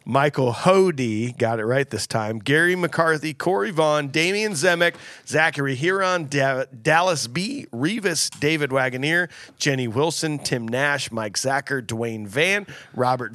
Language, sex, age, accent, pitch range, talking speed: English, male, 40-59, American, 135-175 Hz, 135 wpm